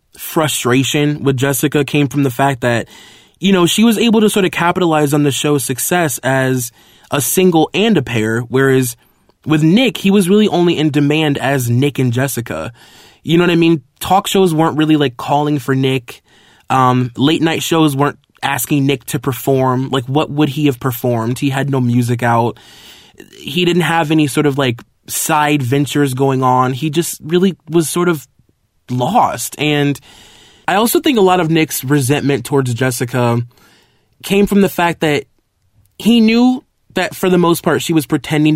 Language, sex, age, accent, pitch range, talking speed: English, male, 20-39, American, 125-160 Hz, 180 wpm